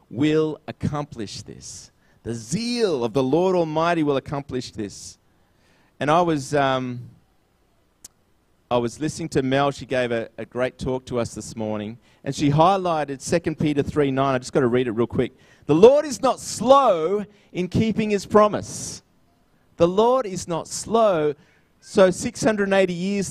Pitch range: 125-200 Hz